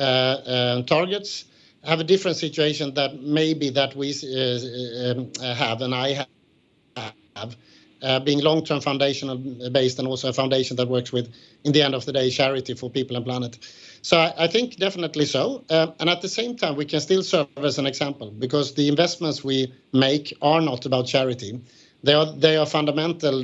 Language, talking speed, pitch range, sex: English, 185 wpm, 130-155 Hz, male